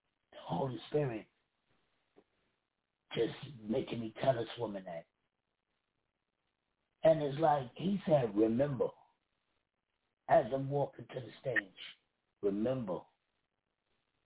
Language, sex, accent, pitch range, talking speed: English, male, American, 130-200 Hz, 95 wpm